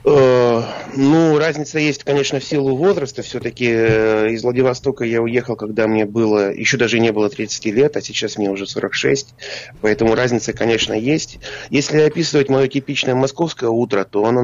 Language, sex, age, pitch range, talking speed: Russian, male, 30-49, 110-140 Hz, 160 wpm